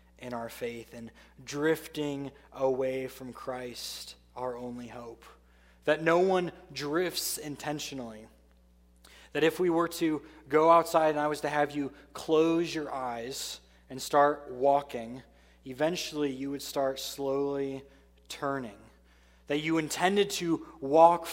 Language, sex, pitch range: English, male, 120-155 Hz